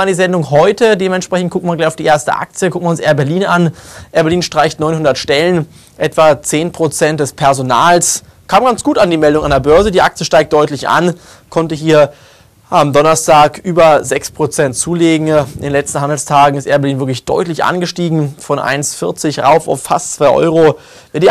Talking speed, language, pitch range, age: 185 wpm, German, 140-165 Hz, 20-39